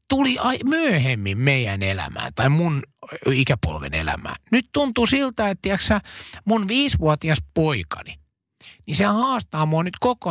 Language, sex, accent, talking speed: Finnish, male, native, 130 wpm